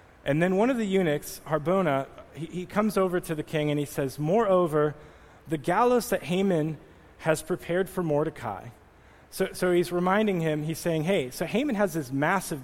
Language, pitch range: English, 140-180 Hz